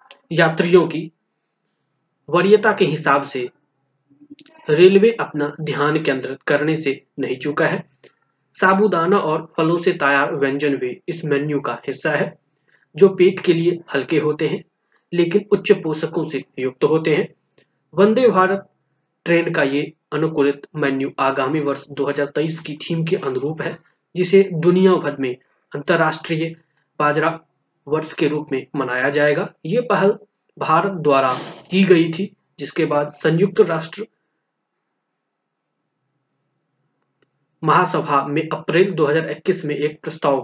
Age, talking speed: 20-39, 130 wpm